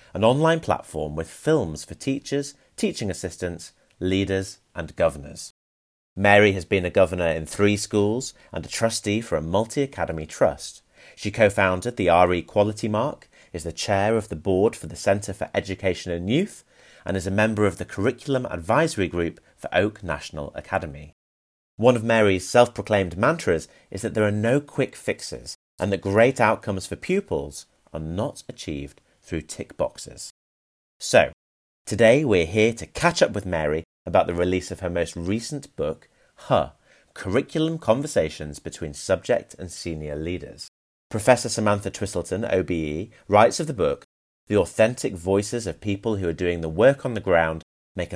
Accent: British